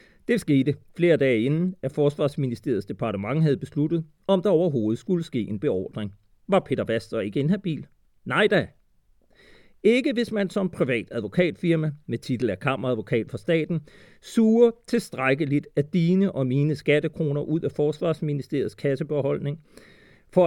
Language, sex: Danish, male